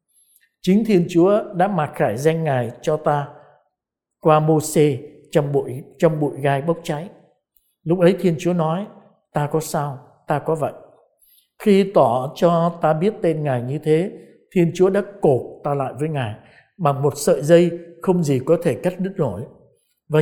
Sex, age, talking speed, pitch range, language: male, 60-79, 180 wpm, 145-185 Hz, Vietnamese